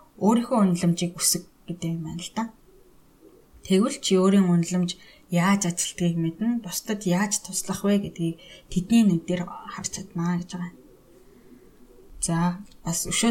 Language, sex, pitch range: Russian, female, 175-205 Hz